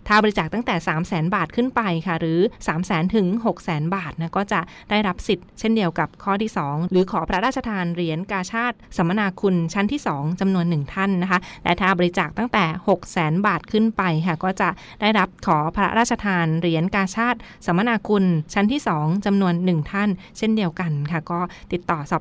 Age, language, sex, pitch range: 20-39, Thai, female, 170-210 Hz